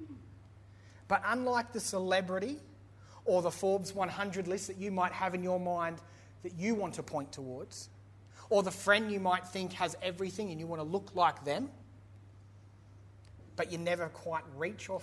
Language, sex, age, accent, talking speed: English, male, 30-49, Australian, 170 wpm